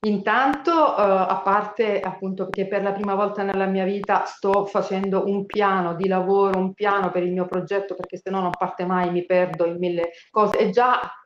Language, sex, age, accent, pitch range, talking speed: Italian, female, 40-59, native, 185-210 Hz, 205 wpm